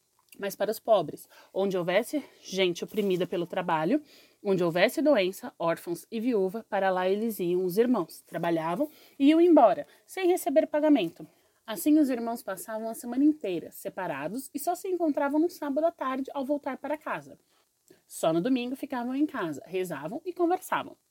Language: Portuguese